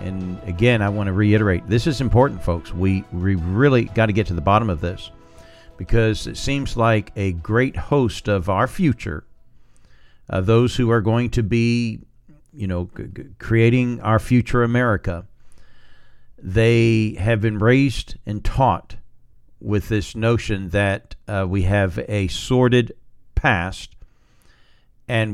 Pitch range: 95-115 Hz